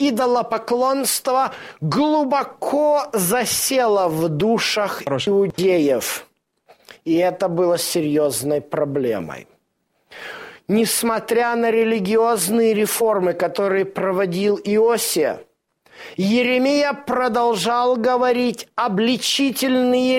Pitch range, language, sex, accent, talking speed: 185-240 Hz, Russian, male, native, 65 wpm